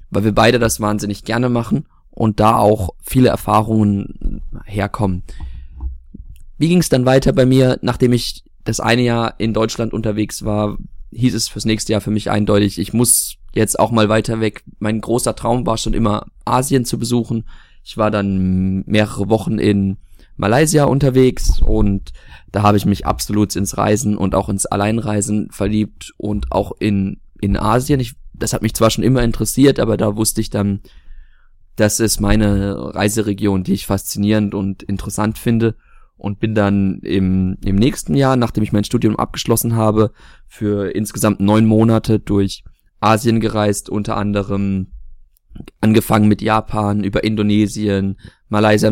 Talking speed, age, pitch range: 160 wpm, 20-39, 100-115 Hz